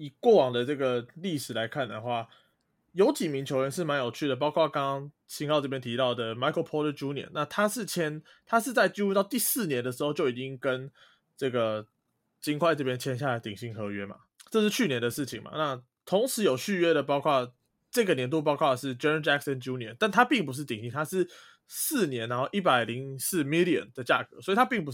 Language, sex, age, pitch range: Chinese, male, 20-39, 125-170 Hz